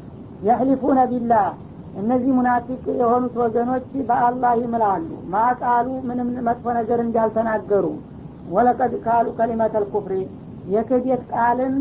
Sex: female